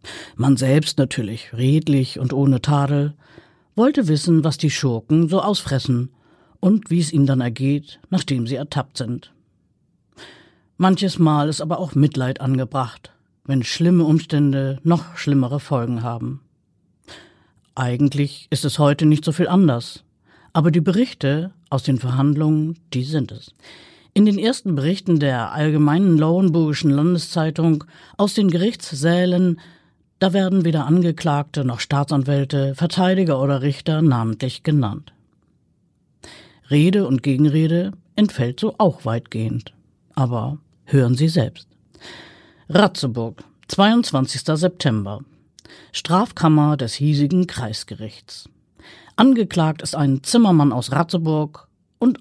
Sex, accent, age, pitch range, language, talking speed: female, German, 50-69, 135-170 Hz, German, 115 wpm